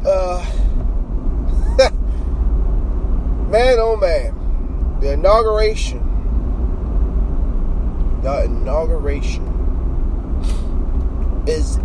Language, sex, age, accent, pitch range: English, male, 30-49, American, 65-85 Hz